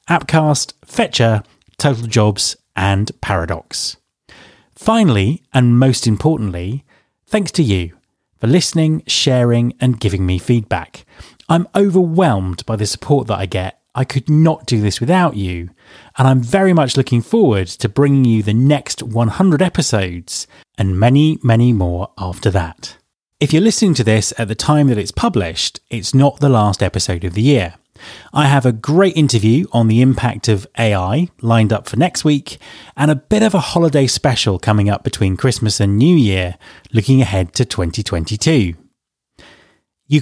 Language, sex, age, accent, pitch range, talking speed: English, male, 30-49, British, 105-150 Hz, 160 wpm